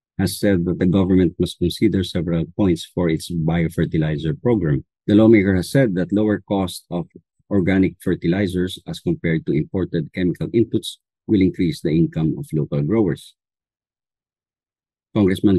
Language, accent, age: English, Filipino, 50-69